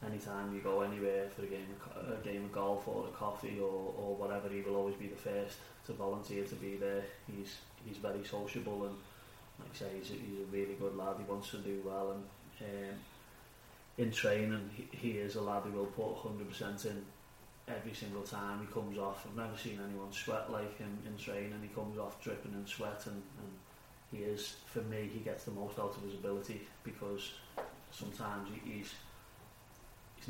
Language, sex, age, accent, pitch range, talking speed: English, male, 30-49, British, 100-110 Hz, 210 wpm